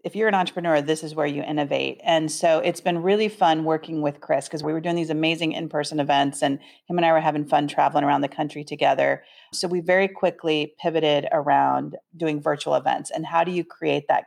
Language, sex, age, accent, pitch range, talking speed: English, female, 40-59, American, 150-185 Hz, 225 wpm